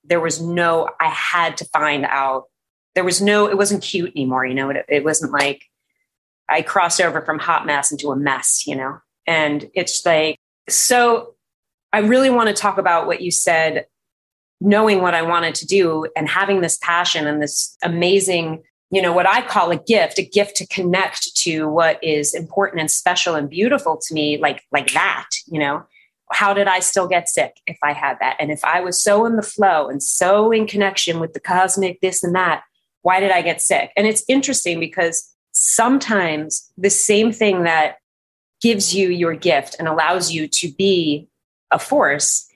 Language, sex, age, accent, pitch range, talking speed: English, female, 30-49, American, 160-200 Hz, 195 wpm